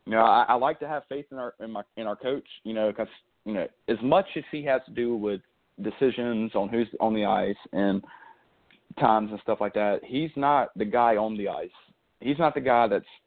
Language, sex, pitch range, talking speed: English, male, 105-130 Hz, 235 wpm